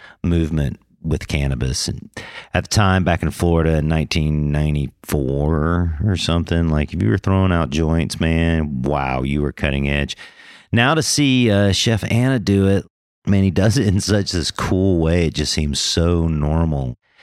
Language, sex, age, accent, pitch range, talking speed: English, male, 40-59, American, 75-105 Hz, 170 wpm